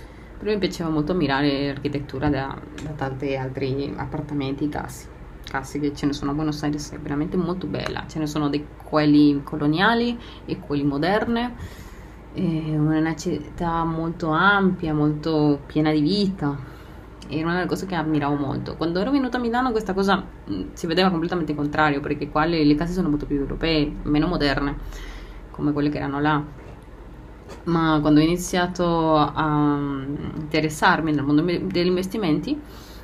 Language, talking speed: Italian, 160 wpm